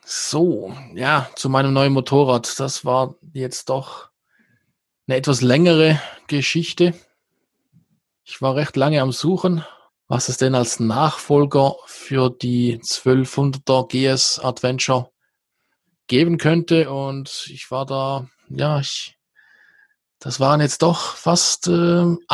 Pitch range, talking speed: 130-165 Hz, 120 wpm